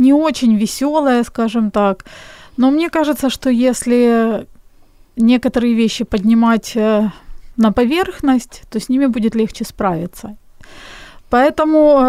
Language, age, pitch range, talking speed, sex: Ukrainian, 30-49, 215-265 Hz, 110 wpm, female